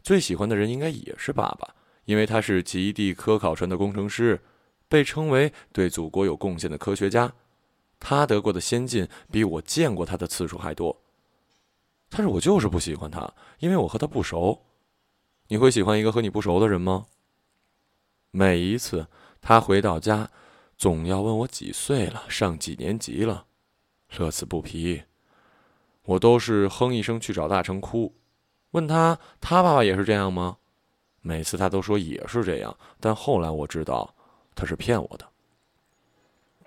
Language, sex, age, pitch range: Chinese, male, 20-39, 95-120 Hz